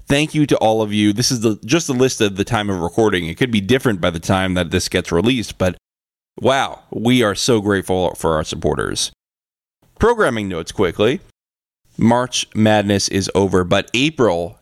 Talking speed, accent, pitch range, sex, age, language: 190 wpm, American, 95-120 Hz, male, 20-39, English